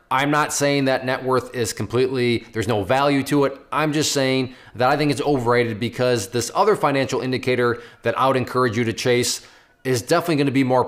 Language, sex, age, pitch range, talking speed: English, male, 20-39, 125-160 Hz, 210 wpm